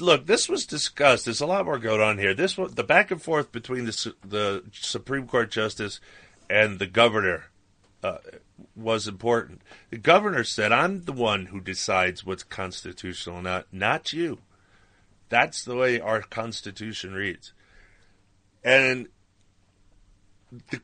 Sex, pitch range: male, 95-130 Hz